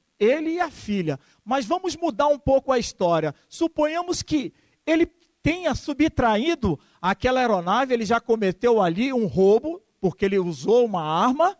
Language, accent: Portuguese, Brazilian